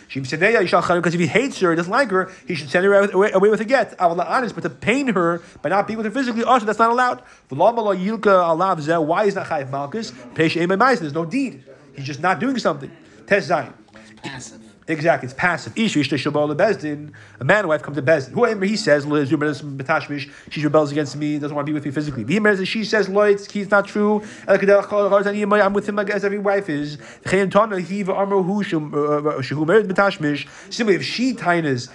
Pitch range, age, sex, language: 155-205 Hz, 30-49, male, English